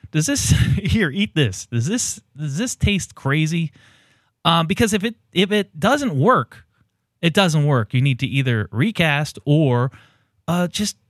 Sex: male